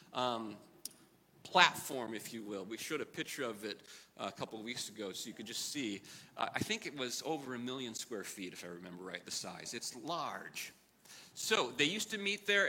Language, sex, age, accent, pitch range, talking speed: English, male, 40-59, American, 150-200 Hz, 215 wpm